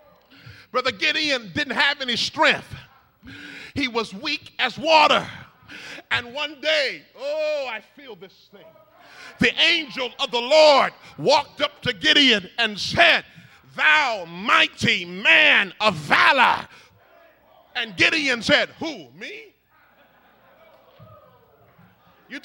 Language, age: English, 40-59